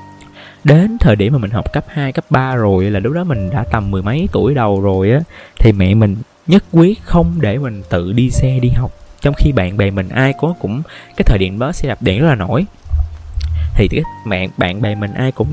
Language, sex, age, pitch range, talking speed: Vietnamese, male, 20-39, 105-140 Hz, 235 wpm